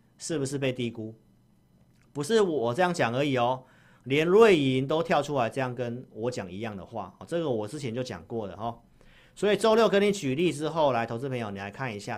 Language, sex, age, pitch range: Chinese, male, 40-59, 105-145 Hz